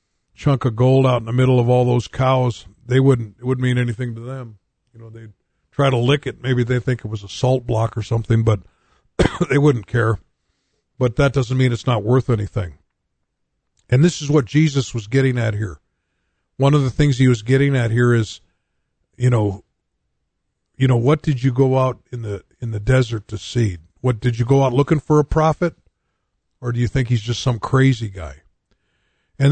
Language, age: English, 50-69